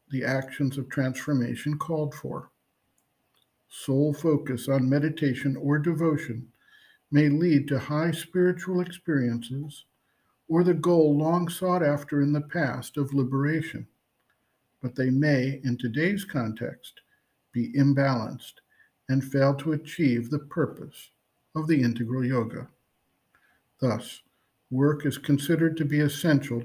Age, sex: 50-69, male